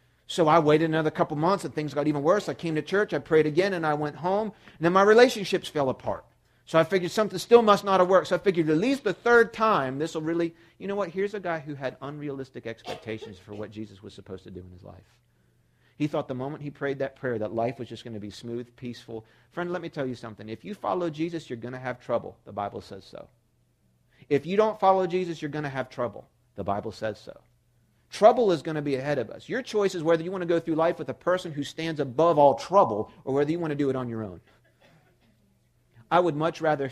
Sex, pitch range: male, 120-175 Hz